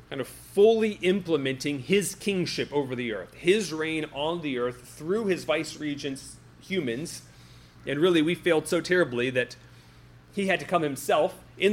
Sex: male